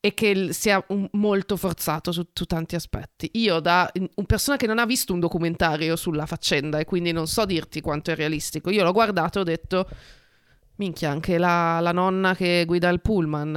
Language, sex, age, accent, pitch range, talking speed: Italian, female, 30-49, native, 155-185 Hz, 195 wpm